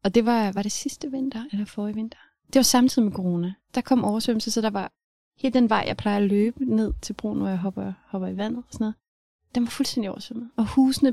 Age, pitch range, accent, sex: 30-49, 200-235 Hz, native, female